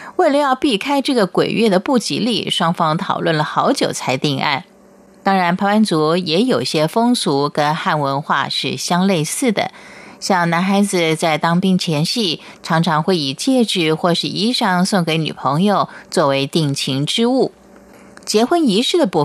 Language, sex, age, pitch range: Chinese, female, 30-49, 155-220 Hz